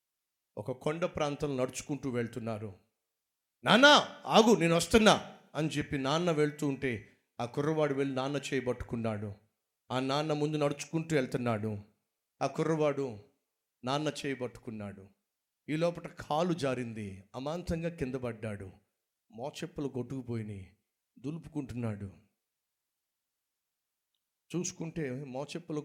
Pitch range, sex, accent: 120-150 Hz, male, native